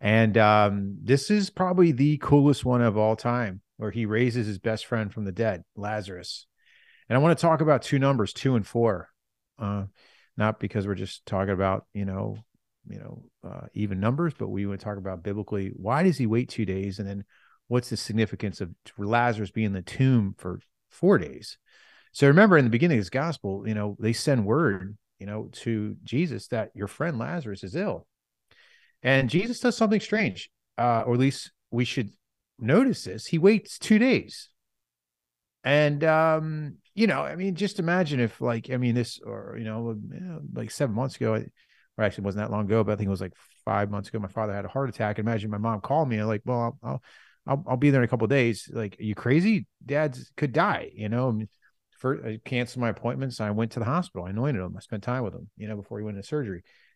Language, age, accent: English, 40-59, American